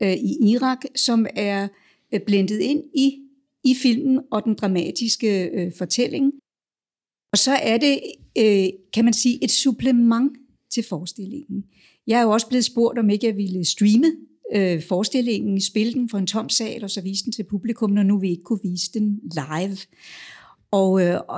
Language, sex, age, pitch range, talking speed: Danish, female, 60-79, 200-245 Hz, 170 wpm